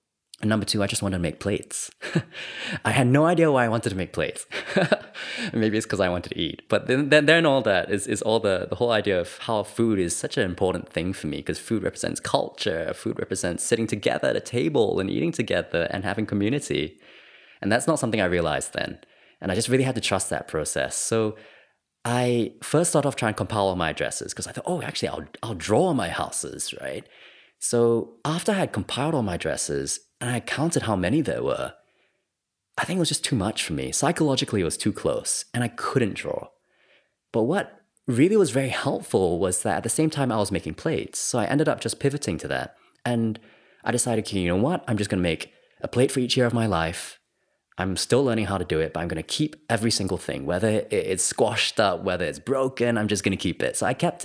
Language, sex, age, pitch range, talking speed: English, male, 20-39, 100-135 Hz, 235 wpm